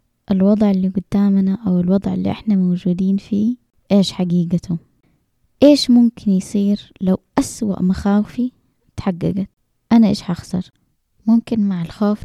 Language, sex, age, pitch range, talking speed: Arabic, female, 20-39, 185-225 Hz, 120 wpm